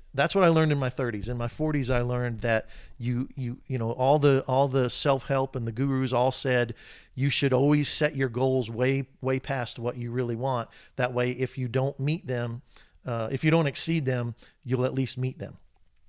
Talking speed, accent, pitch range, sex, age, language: 215 wpm, American, 115-140 Hz, male, 50-69, English